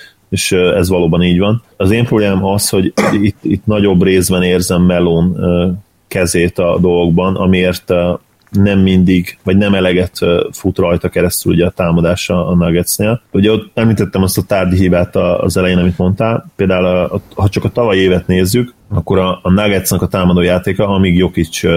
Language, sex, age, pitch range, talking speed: Hungarian, male, 30-49, 90-100 Hz, 170 wpm